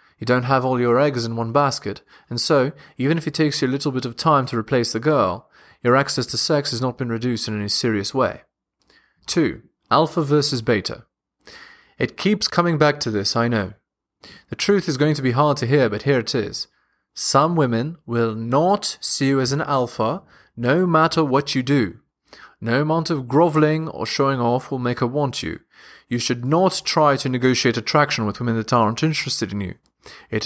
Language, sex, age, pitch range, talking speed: English, male, 30-49, 120-150 Hz, 205 wpm